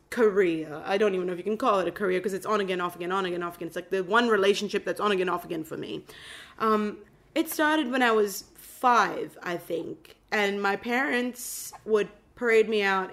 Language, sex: English, female